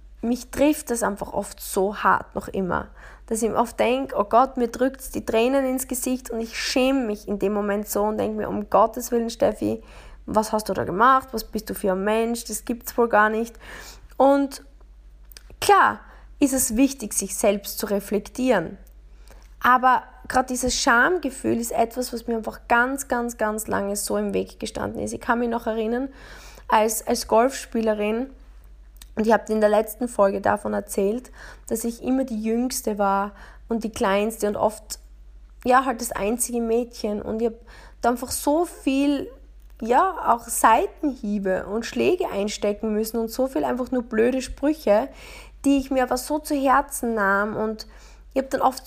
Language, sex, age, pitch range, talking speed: German, female, 20-39, 215-255 Hz, 185 wpm